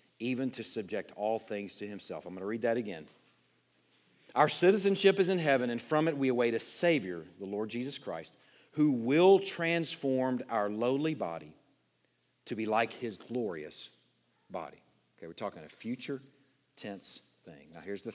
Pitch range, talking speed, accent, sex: 110-165 Hz, 170 wpm, American, male